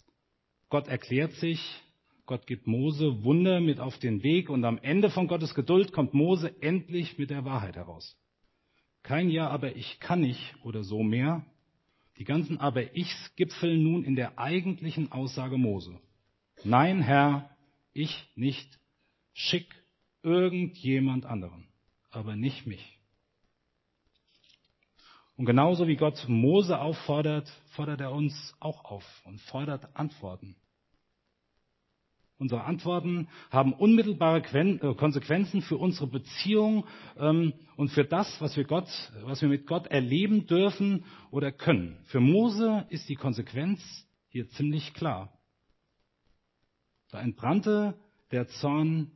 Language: German